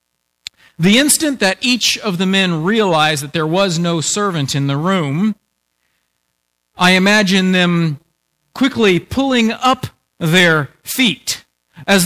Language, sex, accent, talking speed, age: English, male, American, 125 wpm, 40-59